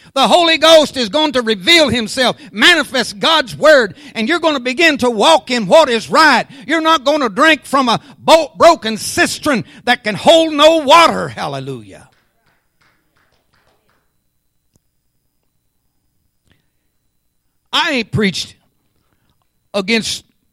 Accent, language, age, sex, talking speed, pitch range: American, English, 60-79, male, 120 wpm, 205-300 Hz